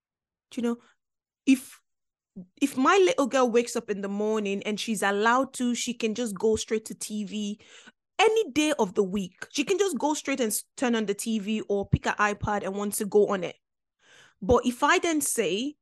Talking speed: 200 wpm